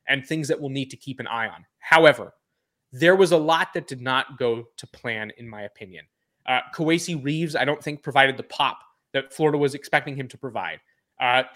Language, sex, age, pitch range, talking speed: English, male, 20-39, 135-165 Hz, 215 wpm